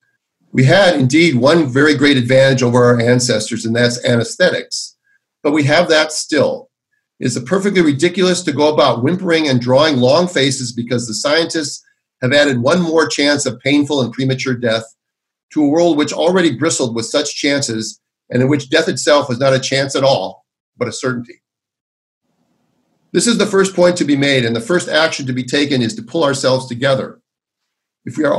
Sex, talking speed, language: male, 190 wpm, English